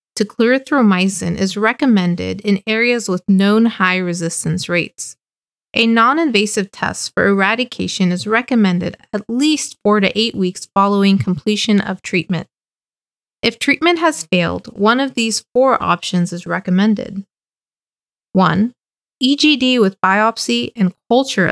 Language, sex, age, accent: English, female, 30-49, American